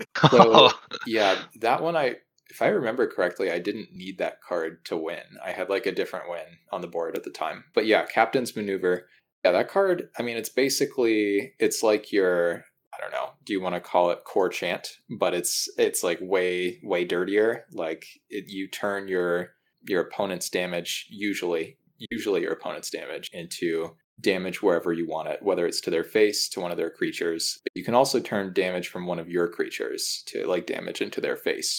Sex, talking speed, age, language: male, 200 wpm, 20-39, English